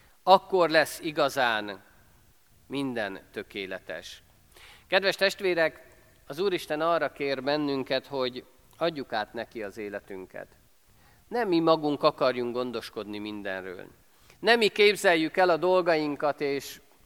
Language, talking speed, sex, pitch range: Hungarian, 110 wpm, male, 120-180 Hz